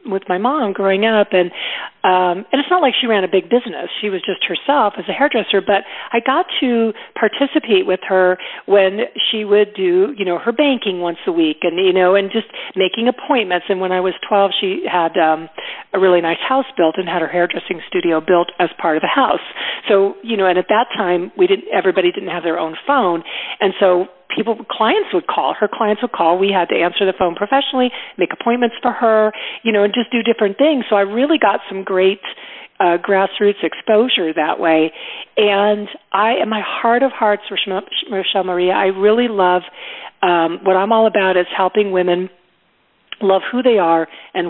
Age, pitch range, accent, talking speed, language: 40-59, 180-235 Hz, American, 210 wpm, English